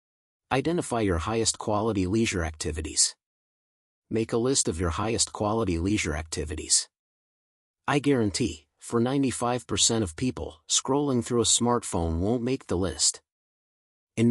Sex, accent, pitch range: male, American, 95-130 Hz